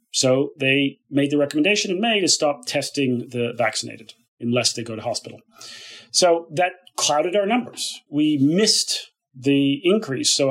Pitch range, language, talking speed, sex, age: 130-165 Hz, English, 155 wpm, male, 40-59